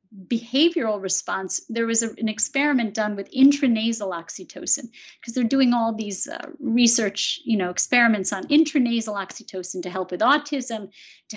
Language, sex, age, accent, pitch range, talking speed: English, female, 50-69, American, 215-275 Hz, 150 wpm